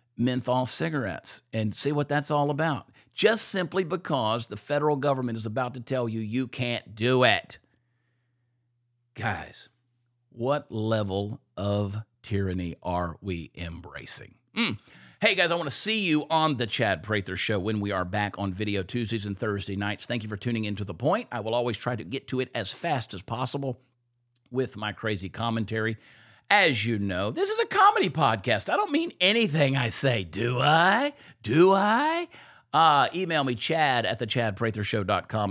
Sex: male